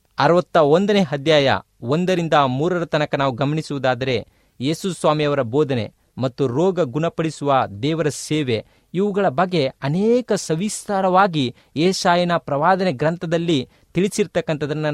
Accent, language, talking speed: native, Kannada, 90 wpm